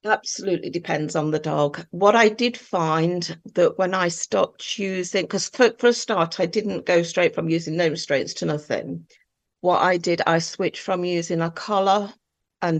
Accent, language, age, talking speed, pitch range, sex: British, English, 50-69, 185 wpm, 165-195 Hz, female